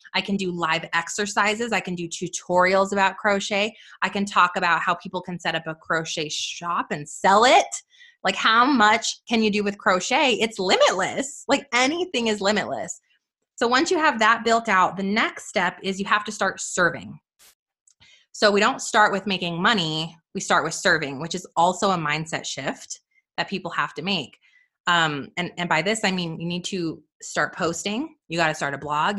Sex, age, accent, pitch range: female, 20-39, American, 175-245 Hz